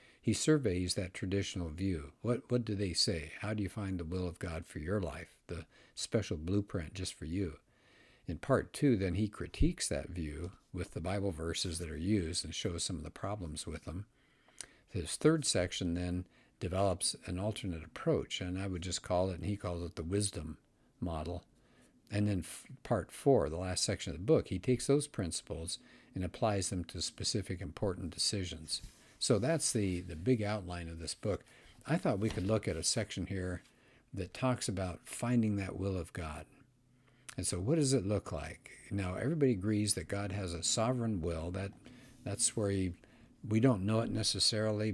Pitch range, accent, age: 90-110 Hz, American, 60-79